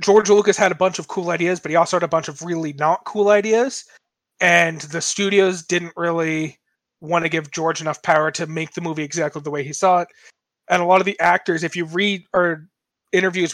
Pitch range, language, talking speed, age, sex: 160-190 Hz, English, 225 wpm, 20-39, male